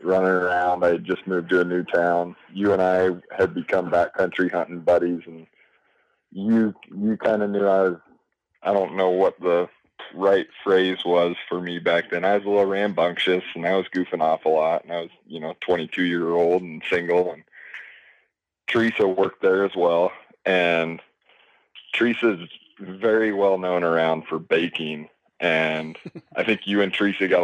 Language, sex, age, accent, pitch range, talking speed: English, male, 20-39, American, 85-95 Hz, 175 wpm